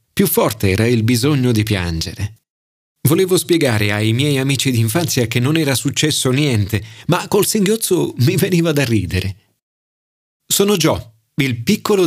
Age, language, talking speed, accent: 30-49, Italian, 145 wpm, native